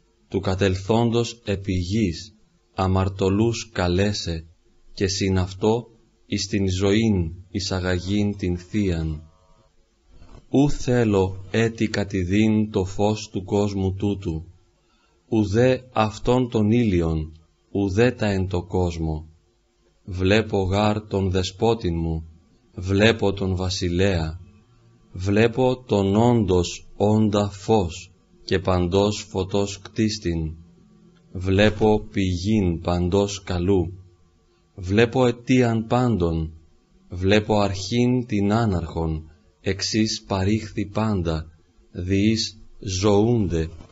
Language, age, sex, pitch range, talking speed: Greek, 40-59, male, 90-110 Hz, 90 wpm